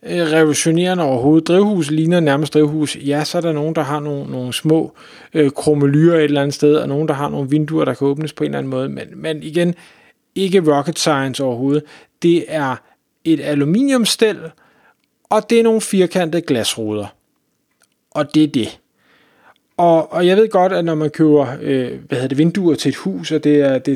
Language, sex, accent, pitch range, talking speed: Danish, male, native, 150-185 Hz, 195 wpm